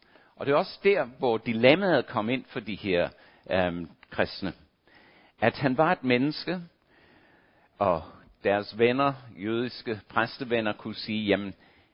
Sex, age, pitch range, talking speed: male, 60-79, 100-140 Hz, 135 wpm